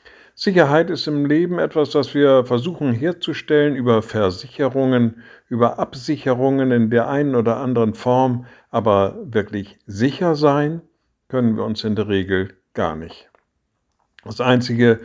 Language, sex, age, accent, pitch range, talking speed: German, male, 60-79, German, 115-160 Hz, 130 wpm